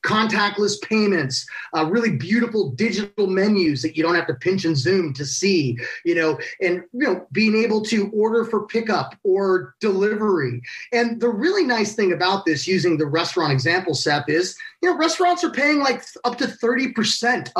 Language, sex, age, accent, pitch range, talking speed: English, male, 30-49, American, 175-230 Hz, 175 wpm